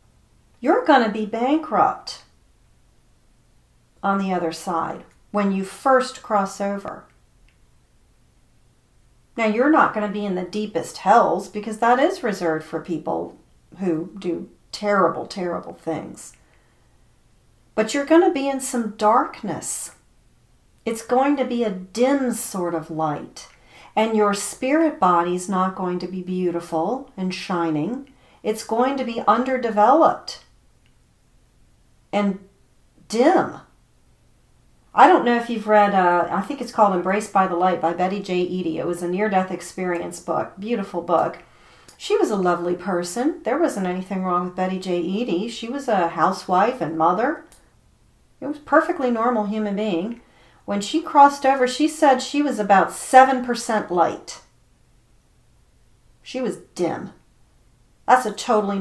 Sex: female